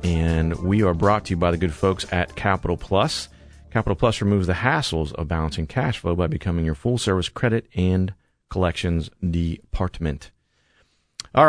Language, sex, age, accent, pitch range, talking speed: English, male, 40-59, American, 80-95 Hz, 160 wpm